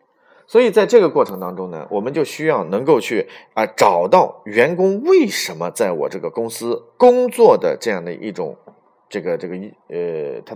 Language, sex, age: Chinese, male, 30-49